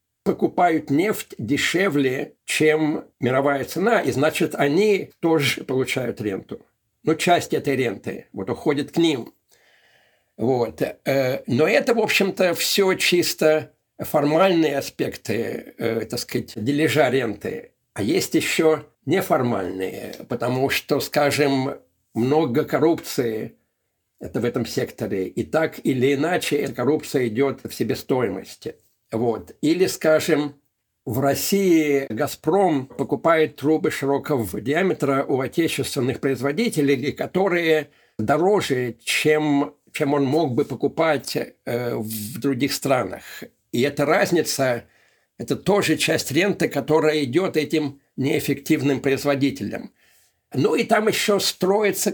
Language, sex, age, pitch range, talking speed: Russian, male, 60-79, 135-165 Hz, 110 wpm